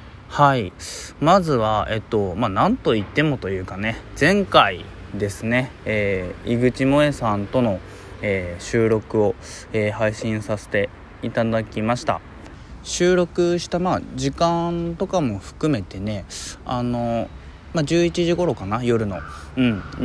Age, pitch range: 20-39, 95-140 Hz